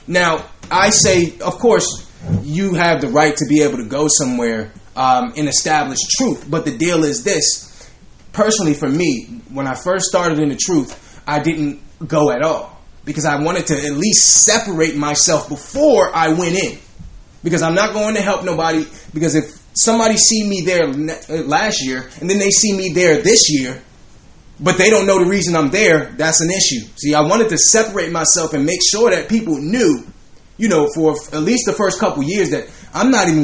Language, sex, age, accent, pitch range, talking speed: English, male, 20-39, American, 150-195 Hz, 195 wpm